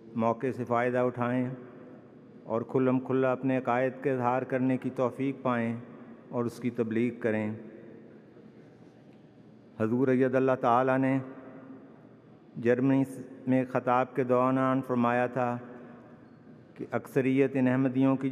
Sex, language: male, English